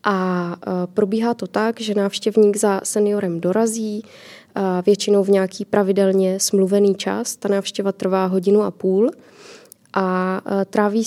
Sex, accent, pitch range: female, native, 190-210 Hz